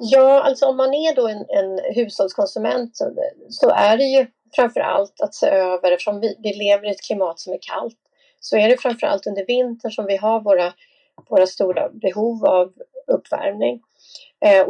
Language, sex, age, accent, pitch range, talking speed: English, female, 30-49, Swedish, 200-275 Hz, 180 wpm